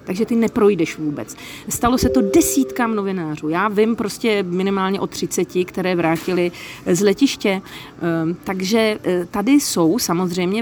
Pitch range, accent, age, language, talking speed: 185-230 Hz, native, 40-59, Czech, 130 wpm